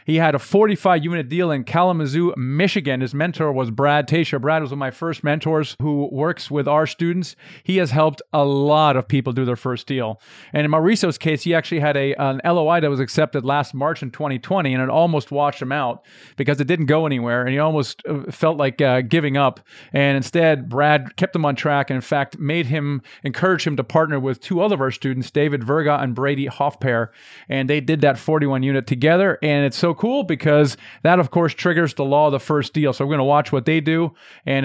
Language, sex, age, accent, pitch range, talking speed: English, male, 40-59, American, 140-165 Hz, 225 wpm